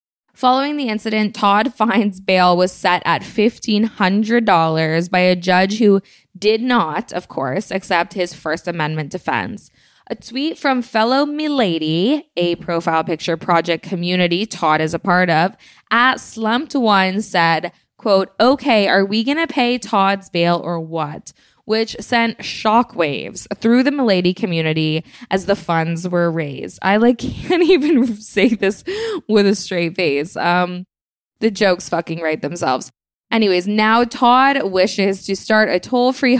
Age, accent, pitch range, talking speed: 10-29, American, 175-230 Hz, 150 wpm